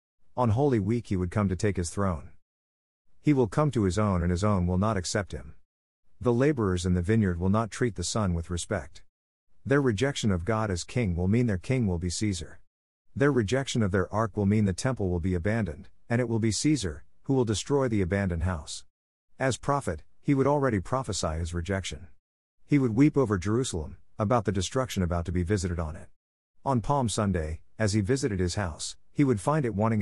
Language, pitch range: English, 90-115 Hz